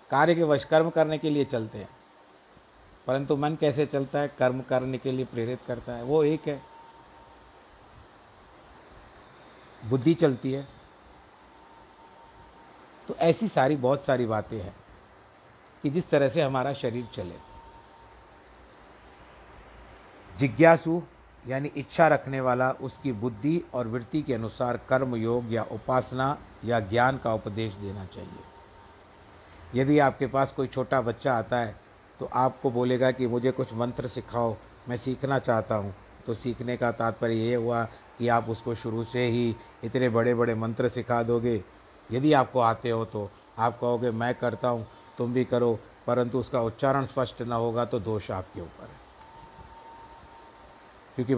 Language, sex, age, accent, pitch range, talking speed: Hindi, male, 50-69, native, 115-135 Hz, 145 wpm